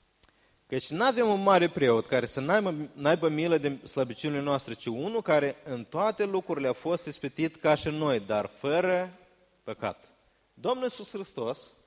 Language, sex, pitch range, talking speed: Romanian, male, 160-235 Hz, 160 wpm